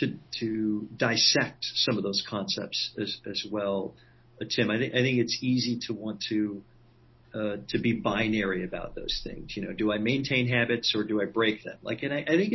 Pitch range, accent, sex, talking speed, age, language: 115-155 Hz, American, male, 210 wpm, 50-69, English